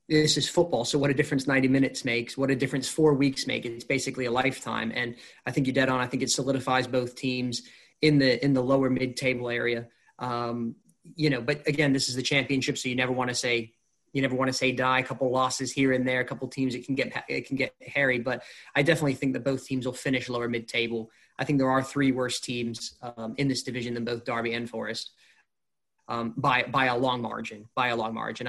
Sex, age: male, 20-39